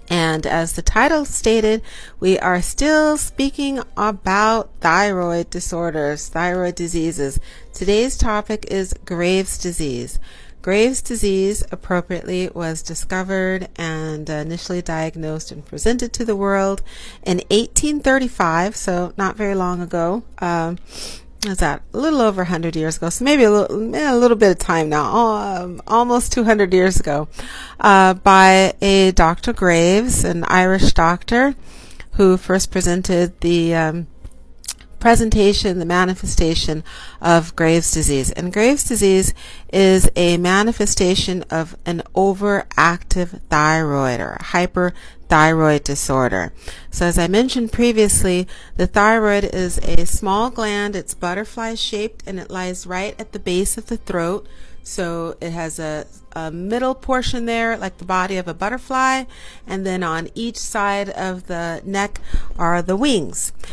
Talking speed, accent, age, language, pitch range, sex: 135 wpm, American, 40-59, English, 170-215 Hz, female